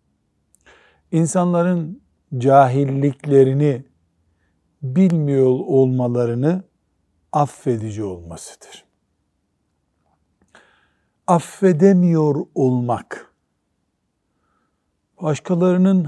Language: Turkish